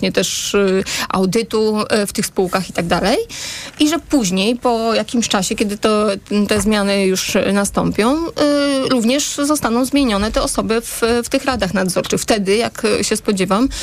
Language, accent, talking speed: Polish, native, 165 wpm